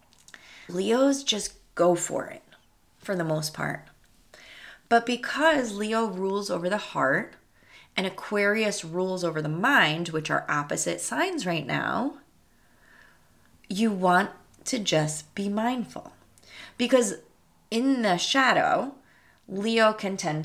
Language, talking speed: English, 120 wpm